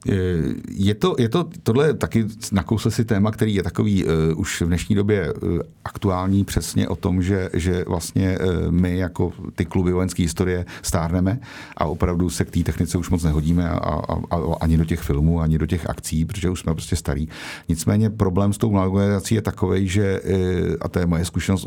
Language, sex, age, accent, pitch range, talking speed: Czech, male, 50-69, native, 85-100 Hz, 200 wpm